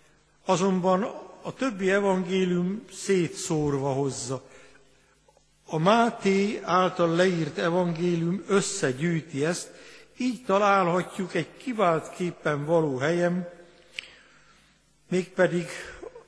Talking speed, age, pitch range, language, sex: 75 wpm, 60-79, 155-195 Hz, Hungarian, male